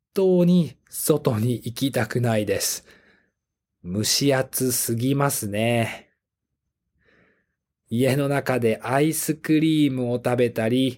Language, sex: Japanese, male